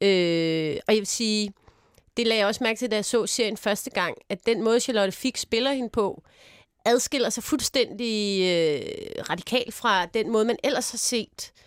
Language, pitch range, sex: English, 195-235 Hz, female